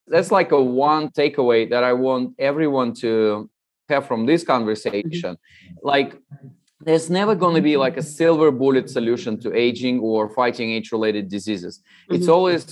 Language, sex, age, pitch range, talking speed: English, male, 30-49, 120-160 Hz, 160 wpm